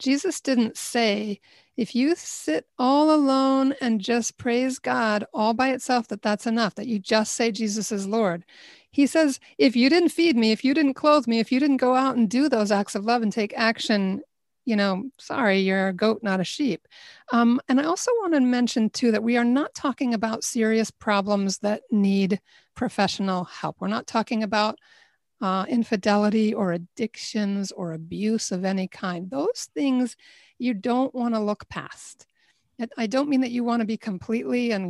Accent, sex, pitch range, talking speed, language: American, female, 200-255 Hz, 190 wpm, English